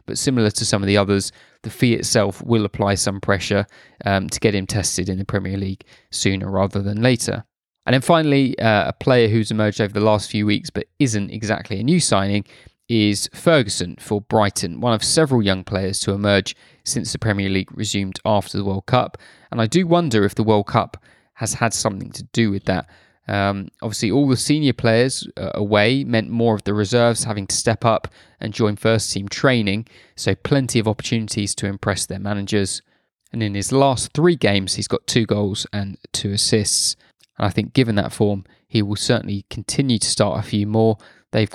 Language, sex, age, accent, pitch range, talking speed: English, male, 20-39, British, 100-115 Hz, 200 wpm